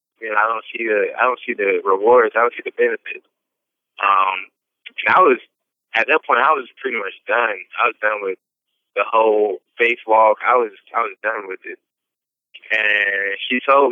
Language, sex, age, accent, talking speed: English, male, 20-39, American, 200 wpm